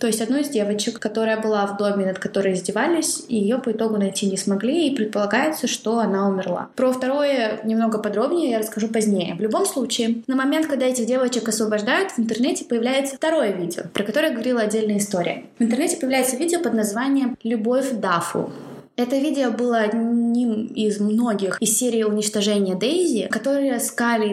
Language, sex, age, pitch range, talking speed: Russian, female, 20-39, 210-265 Hz, 175 wpm